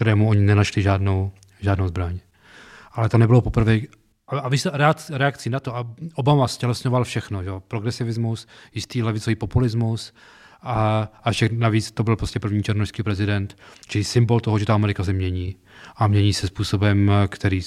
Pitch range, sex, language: 100-115 Hz, male, Czech